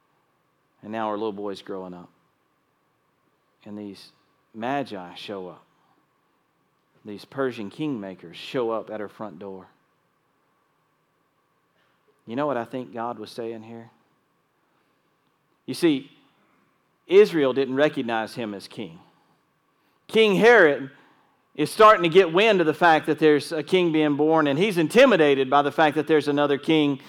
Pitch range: 115-170 Hz